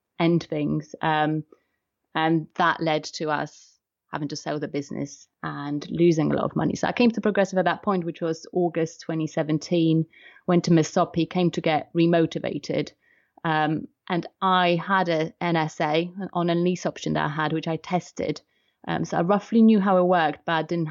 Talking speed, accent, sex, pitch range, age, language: 185 wpm, British, female, 160-180 Hz, 30-49, English